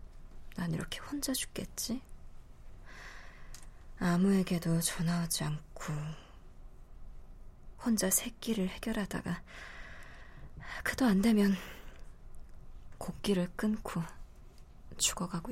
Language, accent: Korean, native